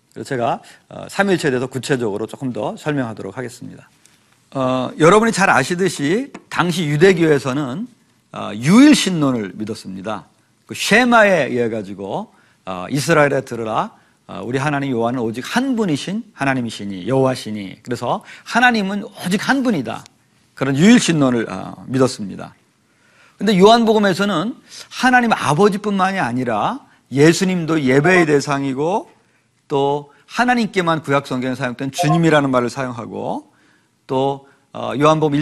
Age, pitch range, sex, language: 40-59, 130-200 Hz, male, Korean